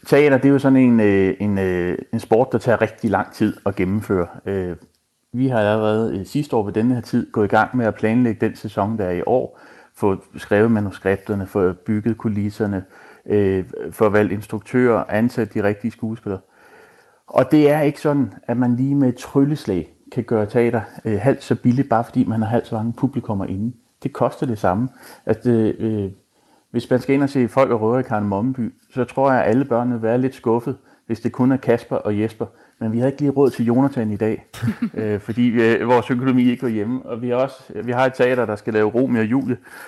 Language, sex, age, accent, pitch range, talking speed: Danish, male, 30-49, native, 110-130 Hz, 210 wpm